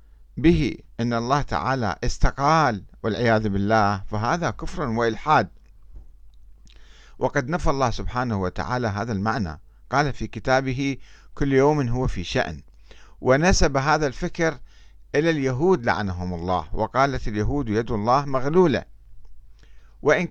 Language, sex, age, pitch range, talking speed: Arabic, male, 50-69, 100-140 Hz, 110 wpm